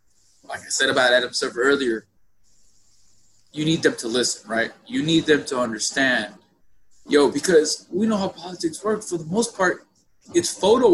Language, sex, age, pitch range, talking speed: English, male, 20-39, 130-180 Hz, 170 wpm